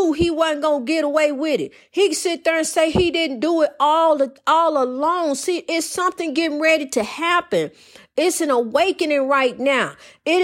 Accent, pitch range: American, 255-315 Hz